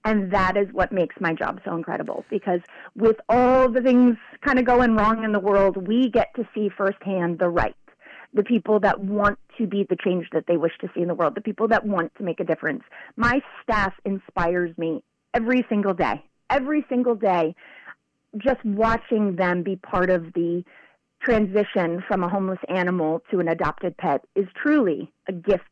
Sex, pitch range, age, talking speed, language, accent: female, 180-225 Hz, 30-49, 190 wpm, English, American